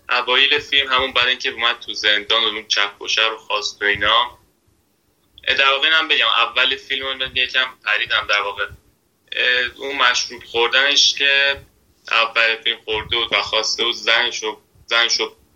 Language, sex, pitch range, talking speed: Persian, male, 110-135 Hz, 140 wpm